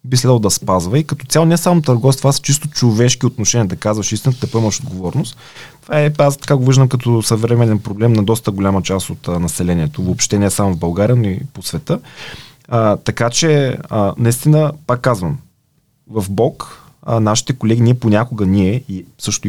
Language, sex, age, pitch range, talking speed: Bulgarian, male, 20-39, 110-140 Hz, 185 wpm